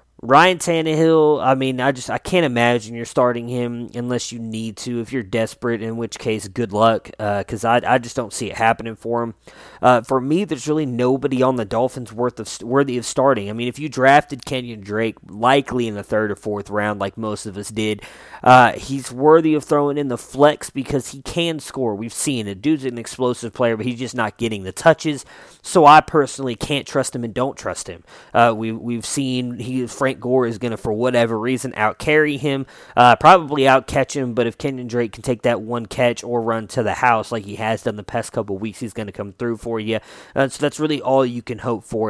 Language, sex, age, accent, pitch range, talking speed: English, male, 20-39, American, 110-135 Hz, 230 wpm